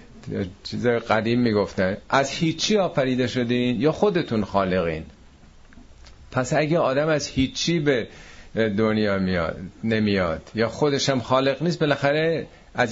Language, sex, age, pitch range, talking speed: Persian, male, 50-69, 100-140 Hz, 120 wpm